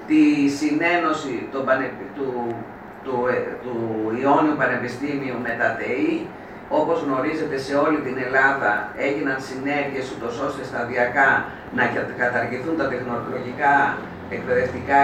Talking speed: 110 wpm